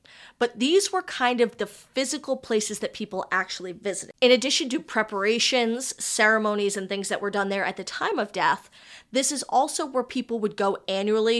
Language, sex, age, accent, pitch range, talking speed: English, female, 20-39, American, 195-235 Hz, 190 wpm